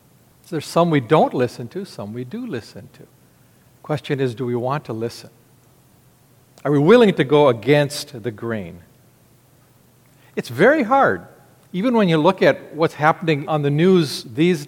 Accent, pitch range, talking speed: American, 130-170 Hz, 170 wpm